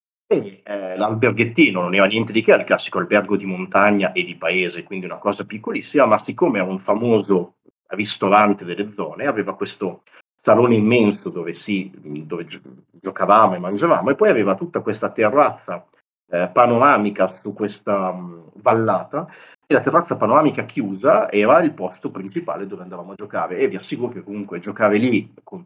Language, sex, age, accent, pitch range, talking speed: Italian, male, 40-59, native, 95-115 Hz, 160 wpm